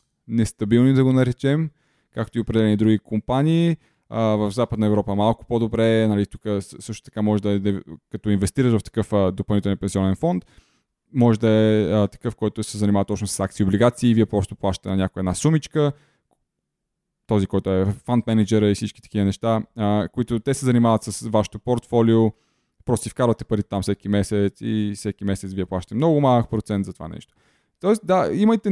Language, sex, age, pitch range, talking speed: Bulgarian, male, 20-39, 105-130 Hz, 175 wpm